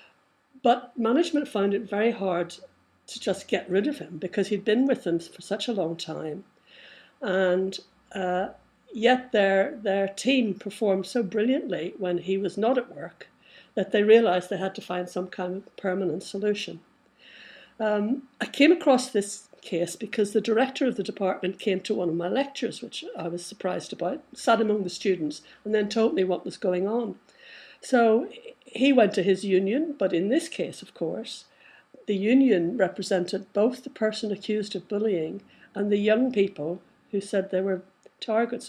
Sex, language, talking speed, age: female, English, 175 wpm, 60-79